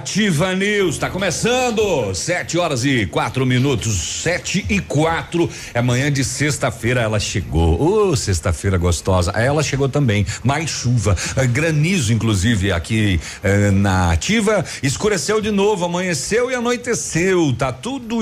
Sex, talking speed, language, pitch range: male, 130 wpm, Portuguese, 100-155 Hz